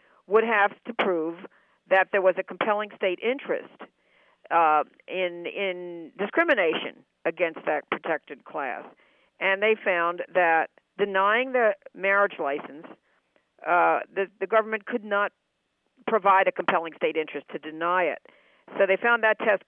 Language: English